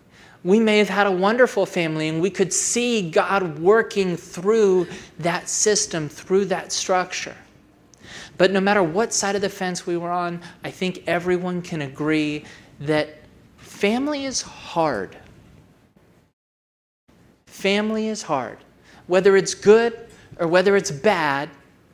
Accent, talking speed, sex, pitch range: American, 135 wpm, male, 165-200 Hz